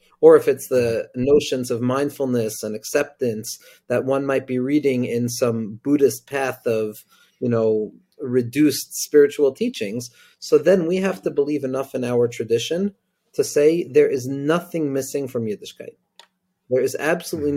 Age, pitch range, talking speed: 40-59, 130-185 Hz, 155 wpm